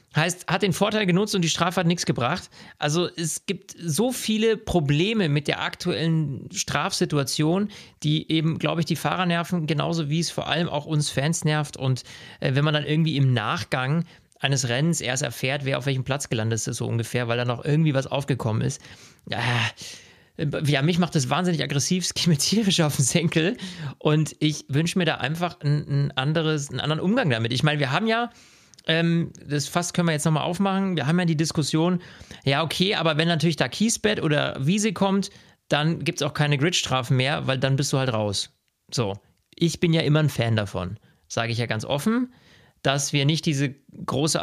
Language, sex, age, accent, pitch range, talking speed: German, male, 40-59, German, 140-170 Hz, 195 wpm